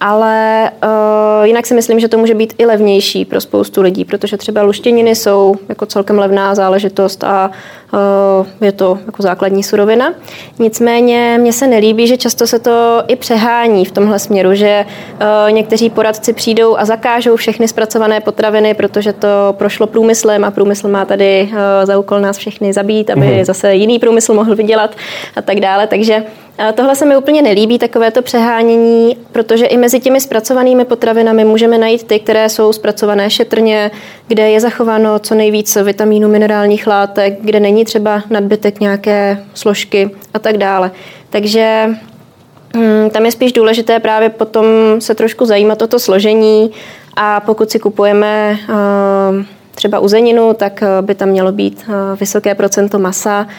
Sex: female